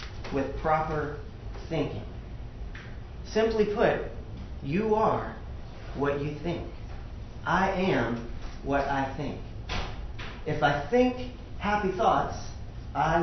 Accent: American